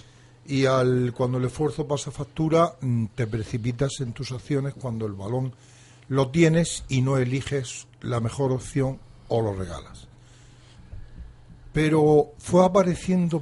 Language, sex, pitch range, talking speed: Spanish, male, 120-155 Hz, 130 wpm